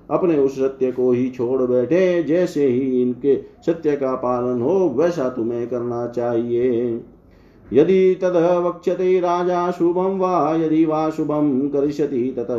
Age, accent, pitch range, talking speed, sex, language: 50-69, native, 125-170 Hz, 105 wpm, male, Hindi